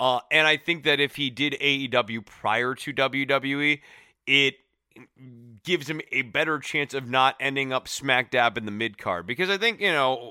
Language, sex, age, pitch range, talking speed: English, male, 30-49, 110-140 Hz, 190 wpm